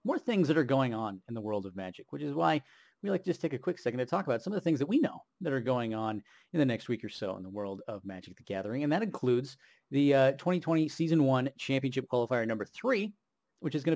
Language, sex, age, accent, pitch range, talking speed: English, male, 40-59, American, 125-175 Hz, 275 wpm